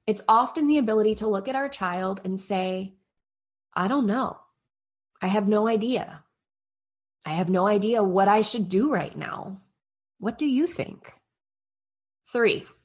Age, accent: 20-39, American